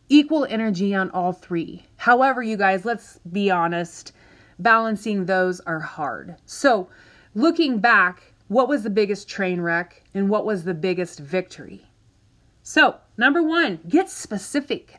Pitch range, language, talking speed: 180-260 Hz, English, 140 wpm